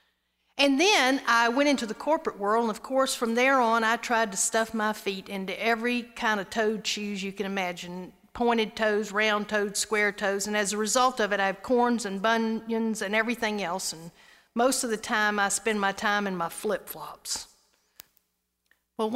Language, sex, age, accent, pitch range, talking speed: English, female, 50-69, American, 205-270 Hz, 195 wpm